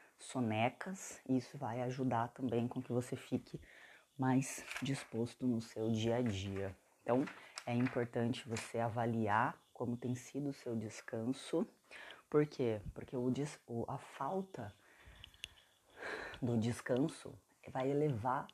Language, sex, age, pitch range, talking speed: Portuguese, female, 20-39, 110-140 Hz, 125 wpm